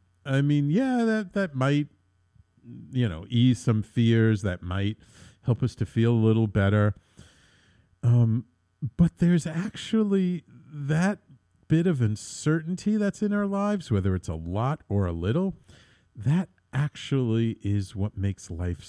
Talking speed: 145 wpm